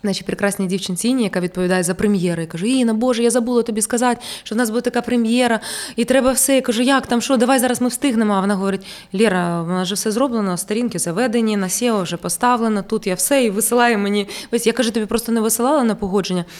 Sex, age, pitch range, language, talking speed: female, 20-39, 200-245 Hz, Ukrainian, 225 wpm